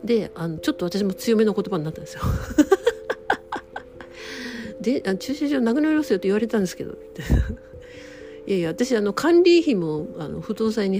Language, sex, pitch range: Japanese, female, 165-255 Hz